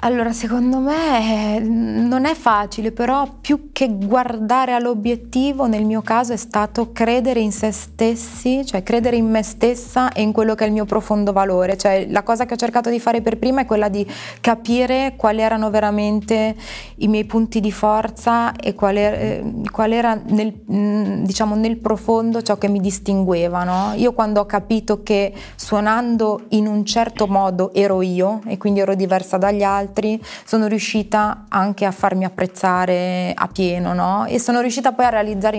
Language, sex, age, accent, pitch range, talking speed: Italian, female, 20-39, native, 195-225 Hz, 170 wpm